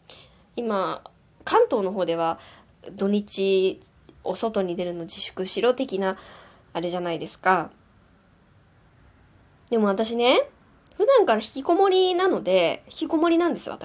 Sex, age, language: female, 20-39, Japanese